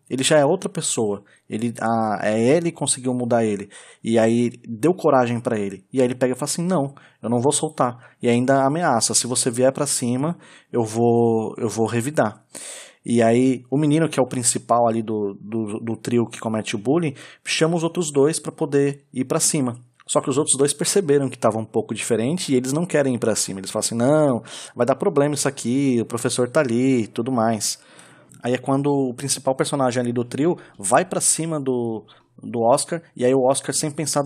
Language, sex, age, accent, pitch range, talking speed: Portuguese, male, 20-39, Brazilian, 115-140 Hz, 220 wpm